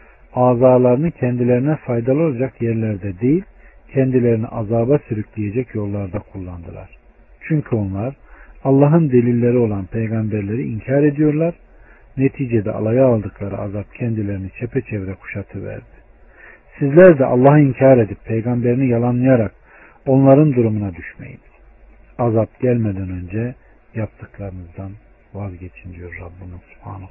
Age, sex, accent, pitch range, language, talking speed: 50-69, male, native, 100-130 Hz, Turkish, 100 wpm